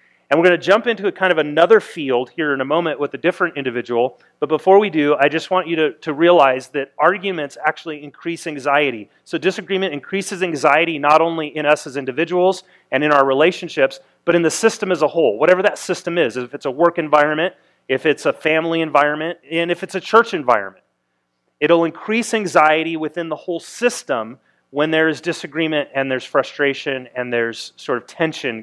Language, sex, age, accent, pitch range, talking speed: English, male, 30-49, American, 140-180 Hz, 195 wpm